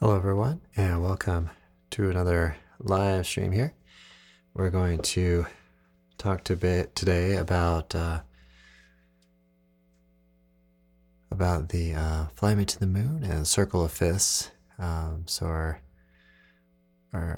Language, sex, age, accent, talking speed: English, male, 30-49, American, 115 wpm